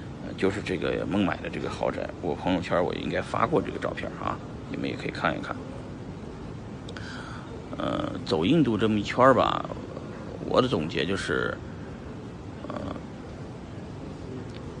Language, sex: Chinese, male